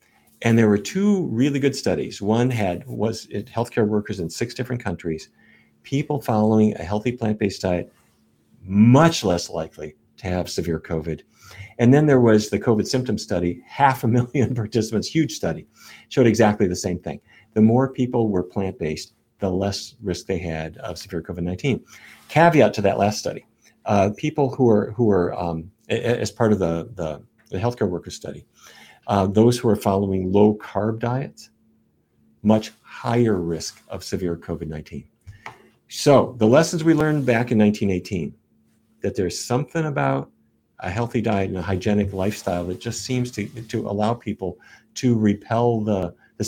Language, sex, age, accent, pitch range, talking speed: English, male, 50-69, American, 90-120 Hz, 165 wpm